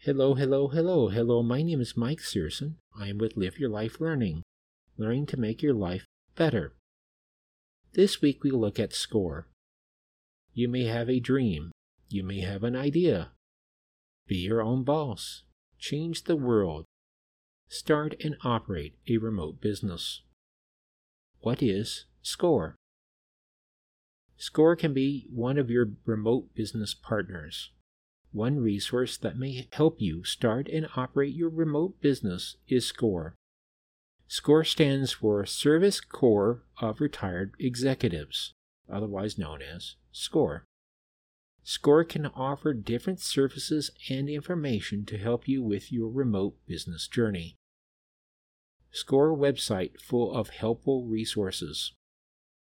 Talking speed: 125 wpm